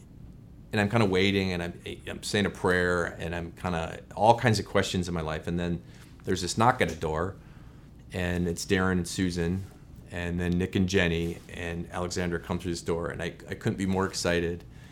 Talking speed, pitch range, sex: 215 wpm, 85-100 Hz, male